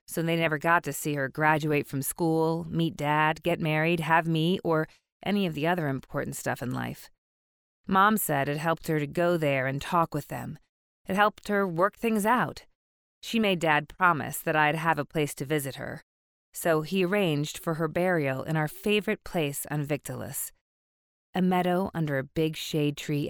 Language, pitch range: English, 140-180 Hz